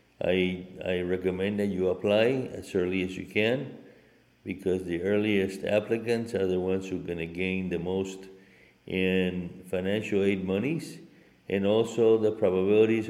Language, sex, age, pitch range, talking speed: English, male, 60-79, 90-110 Hz, 145 wpm